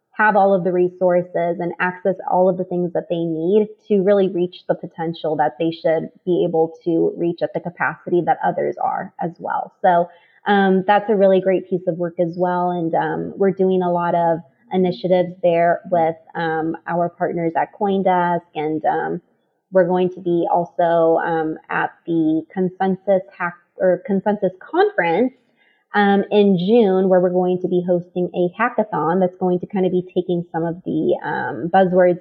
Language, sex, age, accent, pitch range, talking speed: English, female, 20-39, American, 170-195 Hz, 185 wpm